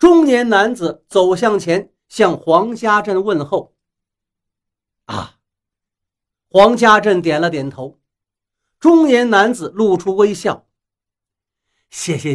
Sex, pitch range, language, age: male, 140-225 Hz, Chinese, 50-69